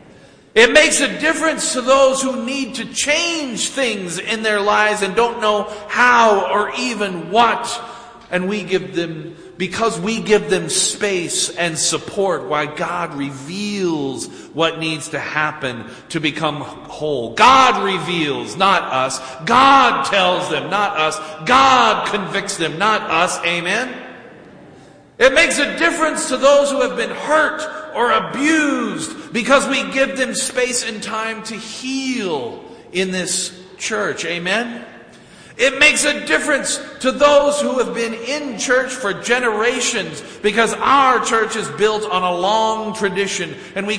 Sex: male